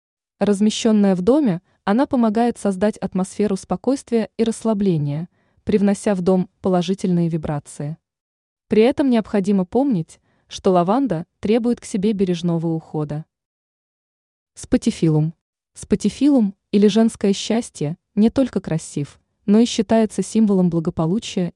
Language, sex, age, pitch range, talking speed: Russian, female, 20-39, 170-225 Hz, 110 wpm